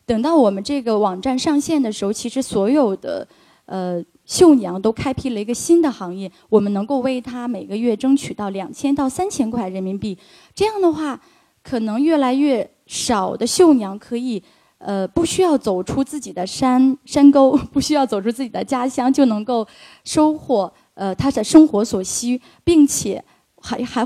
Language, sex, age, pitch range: Chinese, female, 20-39, 205-275 Hz